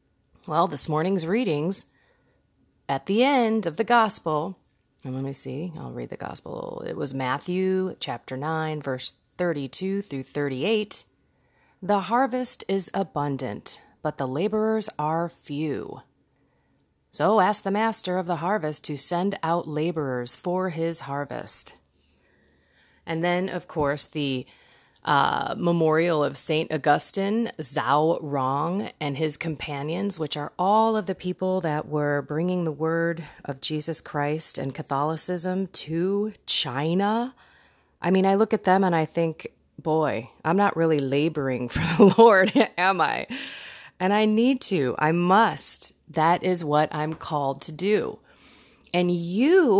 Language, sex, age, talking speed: English, female, 30-49, 140 wpm